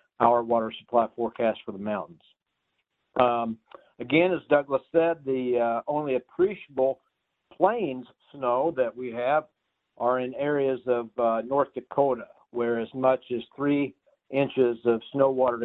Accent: American